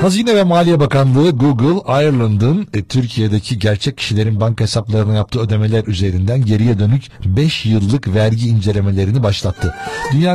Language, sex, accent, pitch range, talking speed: Turkish, male, native, 105-140 Hz, 135 wpm